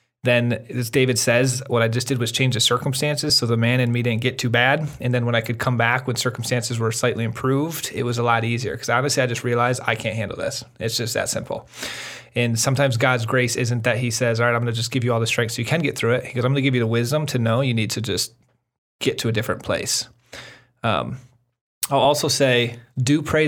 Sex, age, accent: male, 30-49, American